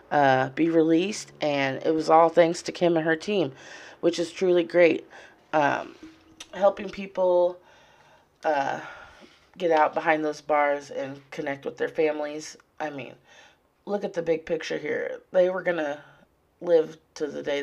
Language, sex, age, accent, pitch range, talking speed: English, female, 30-49, American, 155-185 Hz, 155 wpm